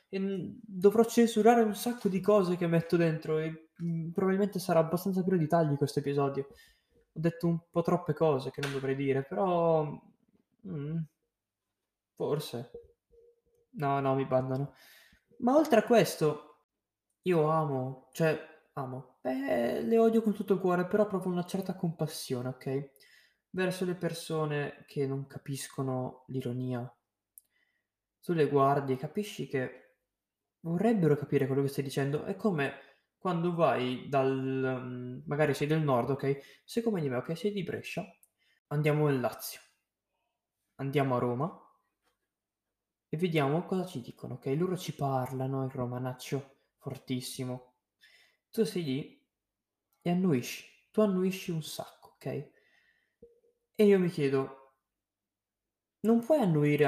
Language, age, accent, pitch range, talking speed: Italian, 20-39, native, 135-185 Hz, 135 wpm